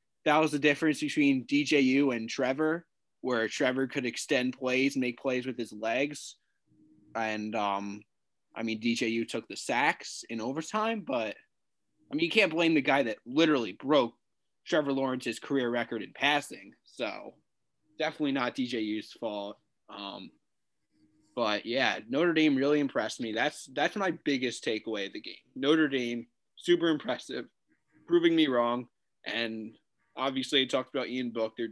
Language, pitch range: English, 115-160 Hz